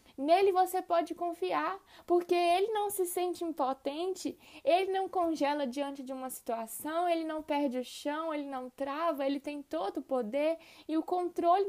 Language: Portuguese